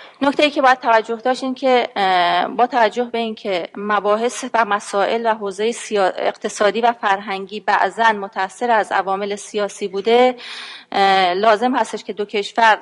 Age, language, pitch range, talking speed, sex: 30-49, Persian, 200-235 Hz, 135 wpm, female